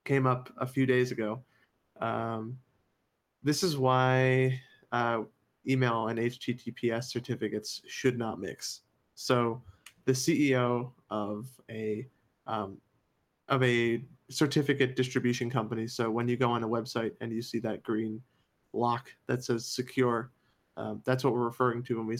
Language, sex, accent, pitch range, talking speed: English, male, American, 115-130 Hz, 145 wpm